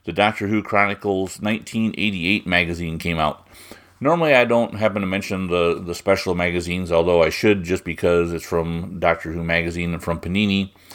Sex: male